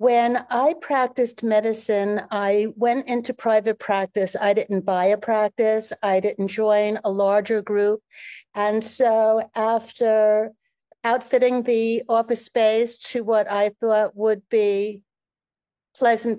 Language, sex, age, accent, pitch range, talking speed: English, female, 60-79, American, 205-235 Hz, 125 wpm